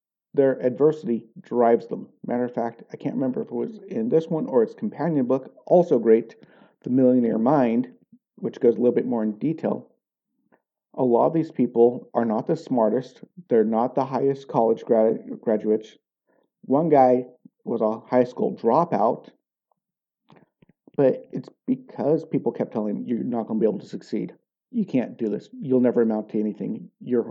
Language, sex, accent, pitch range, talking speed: English, male, American, 115-175 Hz, 175 wpm